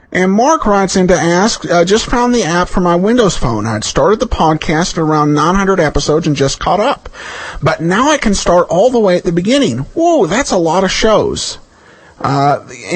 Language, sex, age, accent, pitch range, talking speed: English, male, 50-69, American, 140-190 Hz, 210 wpm